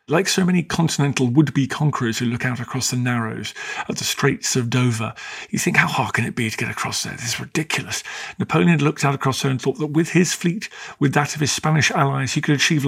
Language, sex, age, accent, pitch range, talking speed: English, male, 40-59, British, 120-165 Hz, 240 wpm